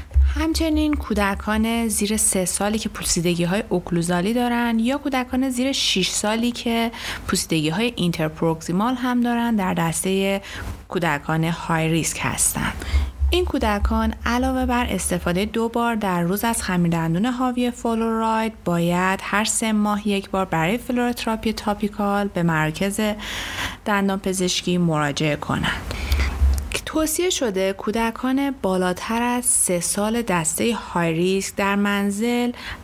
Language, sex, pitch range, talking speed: Persian, female, 175-230 Hz, 115 wpm